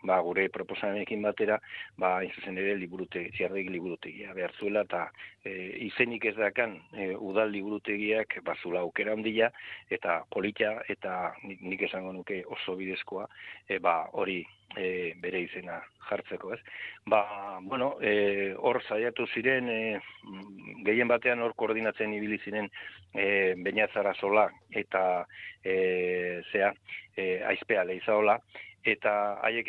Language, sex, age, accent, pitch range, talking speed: Spanish, male, 40-59, Spanish, 95-110 Hz, 90 wpm